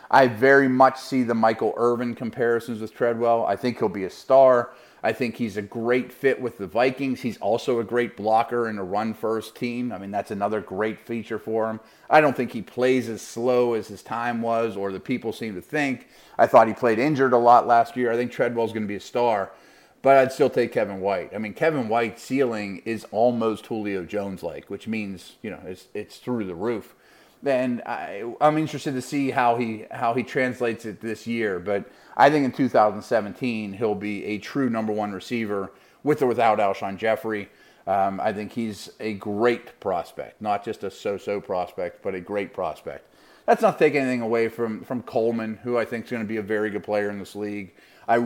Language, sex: English, male